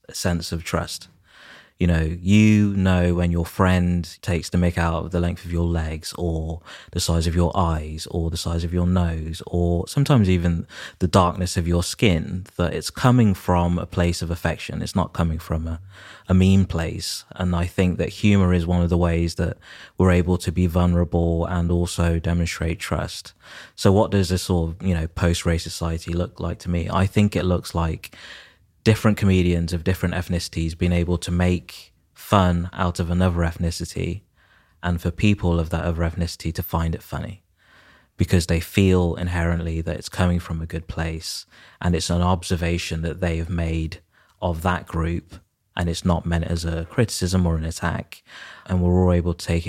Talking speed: 195 wpm